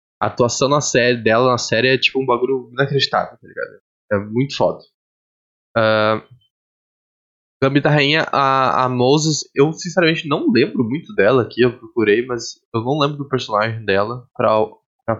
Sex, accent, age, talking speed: male, Brazilian, 10-29, 160 wpm